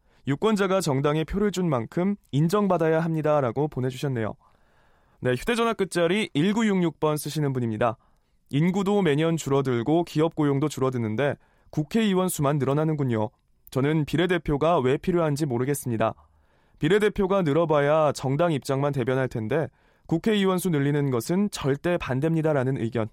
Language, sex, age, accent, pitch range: Korean, male, 20-39, native, 130-175 Hz